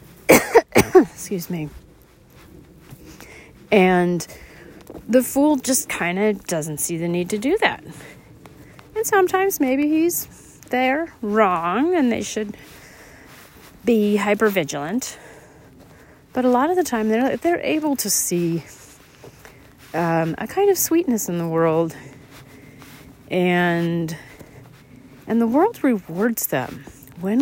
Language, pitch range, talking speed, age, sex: English, 155-235 Hz, 115 wpm, 40-59, female